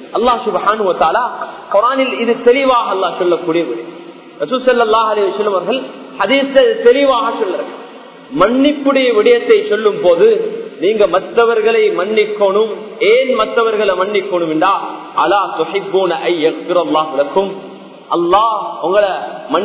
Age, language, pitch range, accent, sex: 30-49, Tamil, 200-300 Hz, native, male